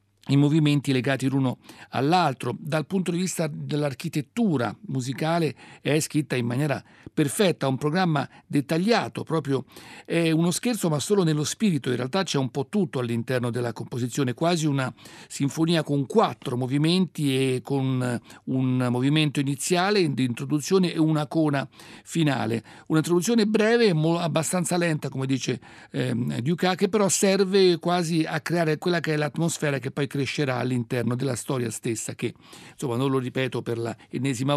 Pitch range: 125-160 Hz